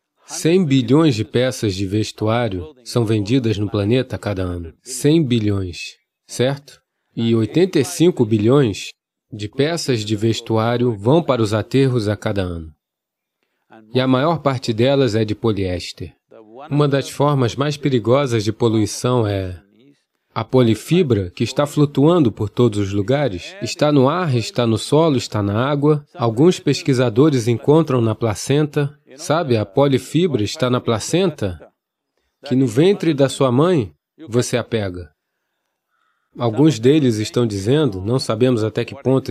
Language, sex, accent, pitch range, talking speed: English, male, Brazilian, 110-140 Hz, 140 wpm